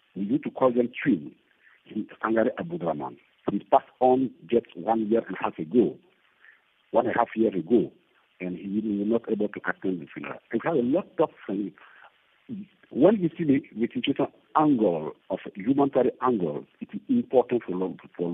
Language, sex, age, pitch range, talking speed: English, male, 50-69, 90-130 Hz, 190 wpm